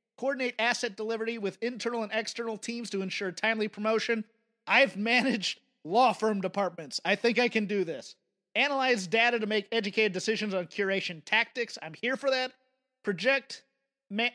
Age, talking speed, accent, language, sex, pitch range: 30-49, 160 wpm, American, English, male, 185-235 Hz